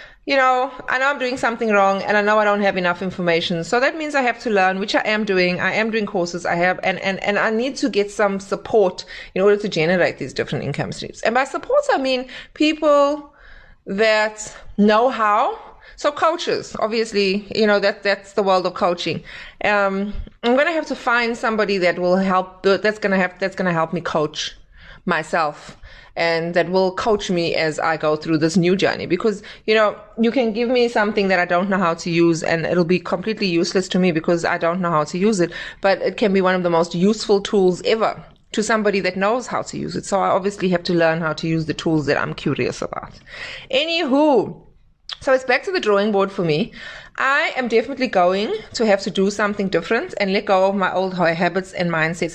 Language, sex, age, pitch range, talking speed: English, female, 20-39, 180-250 Hz, 225 wpm